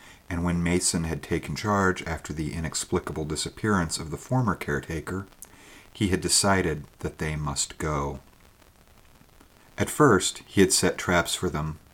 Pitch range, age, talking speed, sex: 80-95 Hz, 50-69, 145 wpm, male